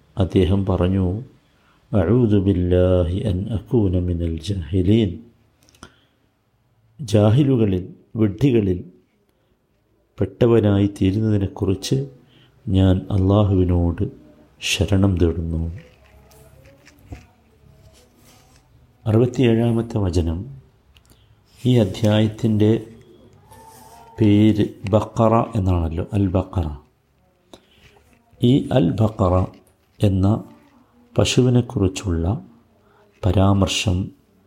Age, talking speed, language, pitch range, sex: 50-69, 60 wpm, Malayalam, 95-120 Hz, male